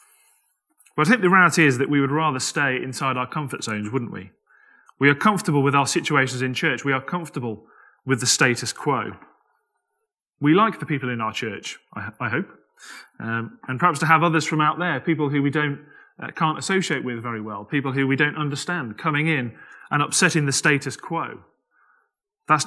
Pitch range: 125-165 Hz